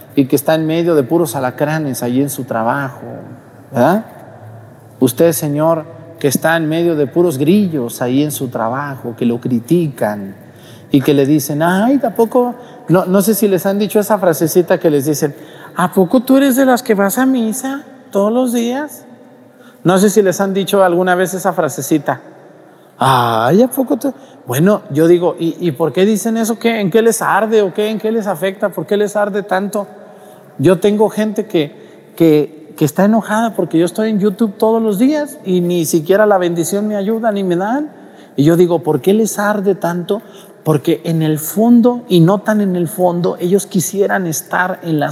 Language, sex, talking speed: Spanish, male, 195 wpm